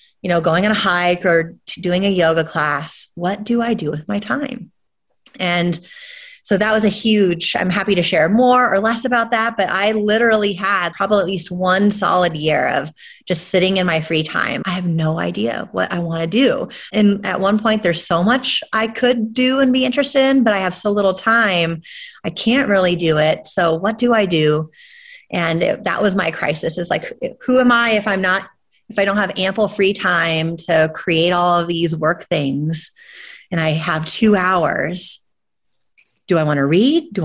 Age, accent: 30-49, American